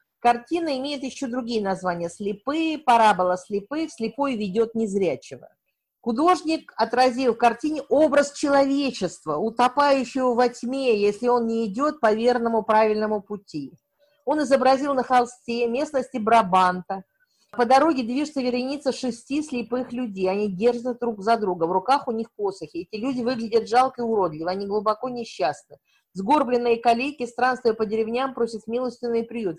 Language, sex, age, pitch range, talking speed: Russian, female, 40-59, 210-265 Hz, 140 wpm